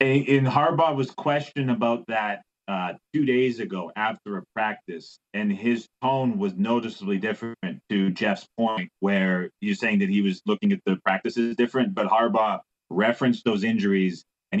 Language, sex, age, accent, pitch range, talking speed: English, male, 30-49, American, 110-150 Hz, 160 wpm